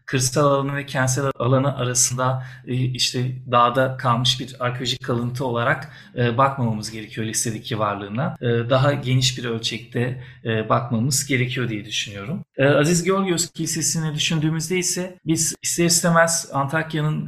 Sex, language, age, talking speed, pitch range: male, Turkish, 40-59, 120 wpm, 125-145 Hz